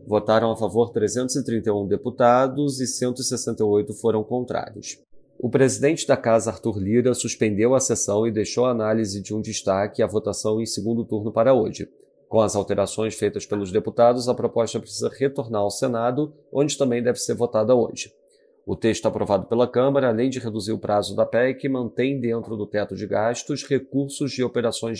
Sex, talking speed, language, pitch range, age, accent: male, 170 wpm, Portuguese, 110-135 Hz, 30-49, Brazilian